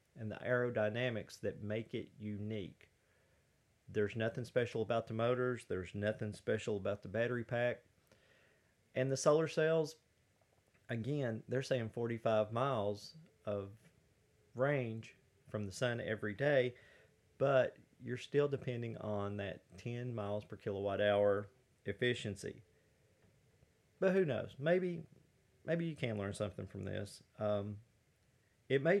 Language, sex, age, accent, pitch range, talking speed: English, male, 40-59, American, 105-130 Hz, 130 wpm